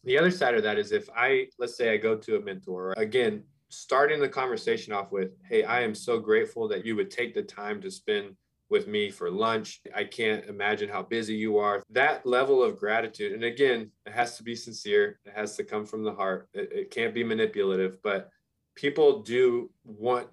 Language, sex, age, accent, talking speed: English, male, 20-39, American, 215 wpm